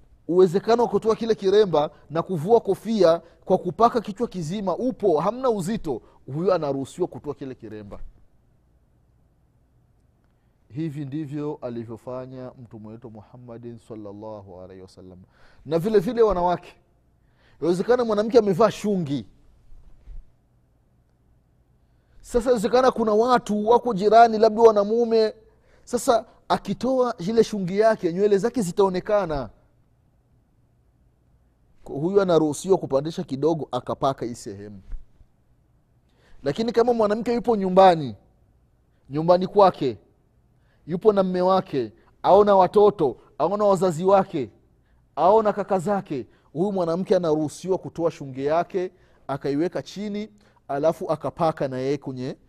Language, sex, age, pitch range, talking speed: Swahili, male, 30-49, 135-210 Hz, 105 wpm